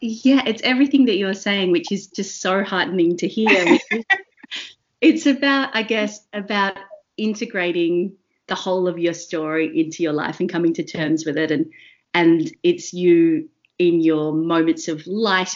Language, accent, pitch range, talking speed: English, Australian, 155-195 Hz, 160 wpm